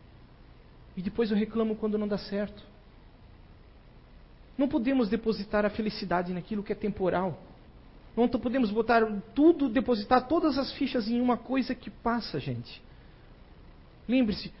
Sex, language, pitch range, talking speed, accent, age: male, Portuguese, 155-215 Hz, 130 wpm, Brazilian, 50-69